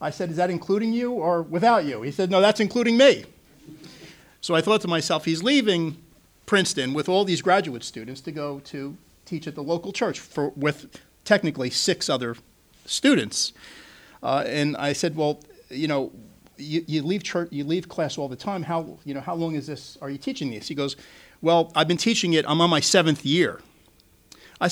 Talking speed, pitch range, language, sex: 200 wpm, 140-185 Hz, English, male